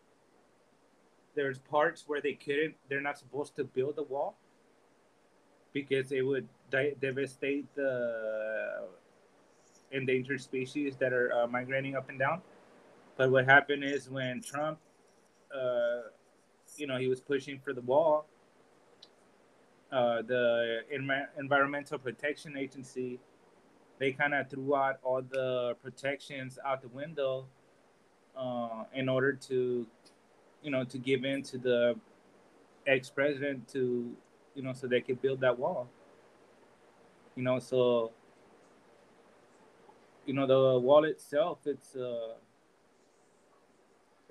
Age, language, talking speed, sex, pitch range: 30-49, English, 125 wpm, male, 125-140 Hz